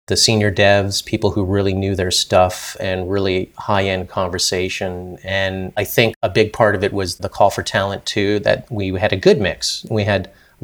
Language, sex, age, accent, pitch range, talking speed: English, male, 30-49, American, 90-110 Hz, 205 wpm